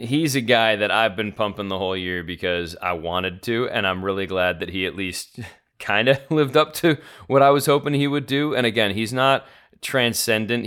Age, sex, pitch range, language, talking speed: 30-49, male, 95-120 Hz, English, 220 wpm